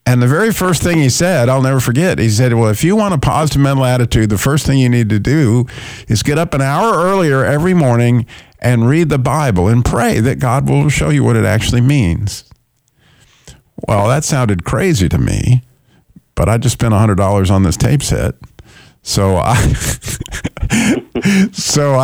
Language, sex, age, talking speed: English, male, 50-69, 185 wpm